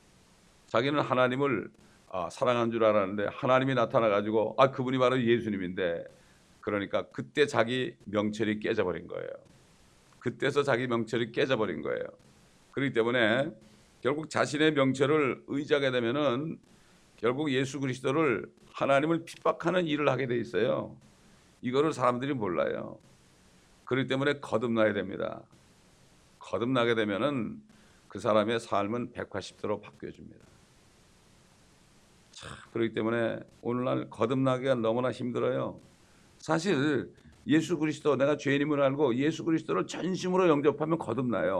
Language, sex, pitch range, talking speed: English, male, 115-155 Hz, 100 wpm